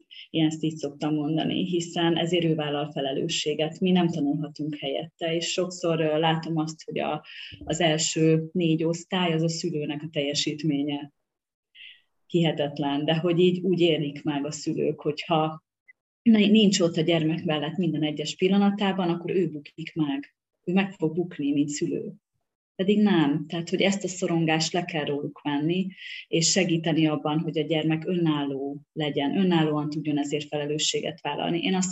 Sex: female